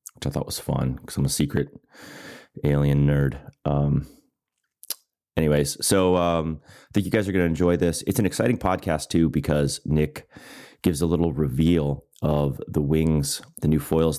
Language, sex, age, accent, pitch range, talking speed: English, male, 30-49, American, 70-80 Hz, 170 wpm